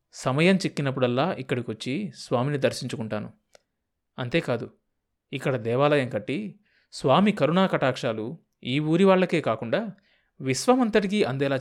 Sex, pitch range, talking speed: male, 120-180 Hz, 90 wpm